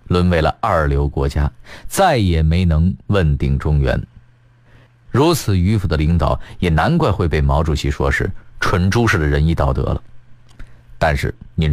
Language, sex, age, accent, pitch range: Chinese, male, 50-69, native, 85-125 Hz